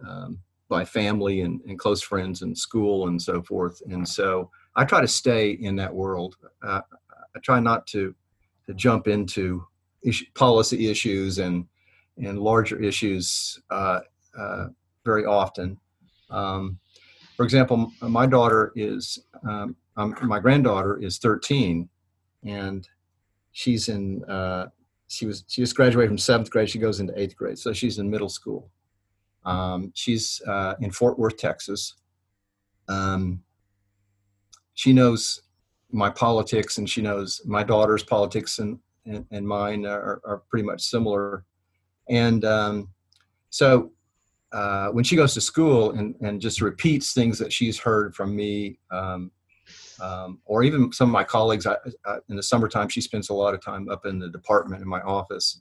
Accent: American